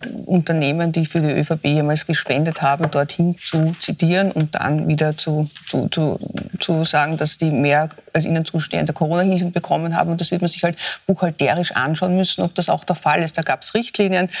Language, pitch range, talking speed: German, 155-175 Hz, 195 wpm